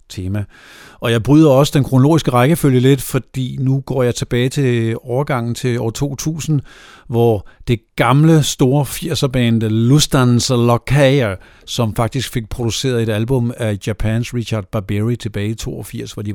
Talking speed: 150 wpm